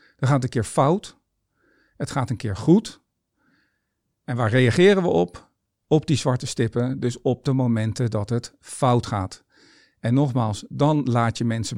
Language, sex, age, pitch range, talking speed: Dutch, male, 50-69, 115-140 Hz, 175 wpm